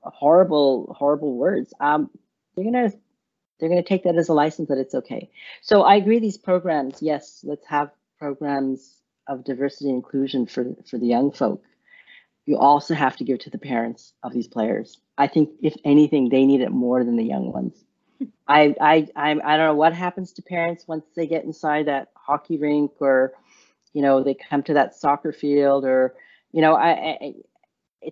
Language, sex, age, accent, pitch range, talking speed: English, female, 40-59, American, 140-175 Hz, 190 wpm